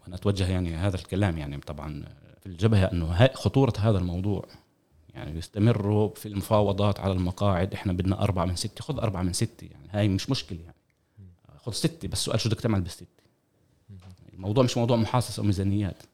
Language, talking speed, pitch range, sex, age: Arabic, 170 wpm, 90-115 Hz, male, 30-49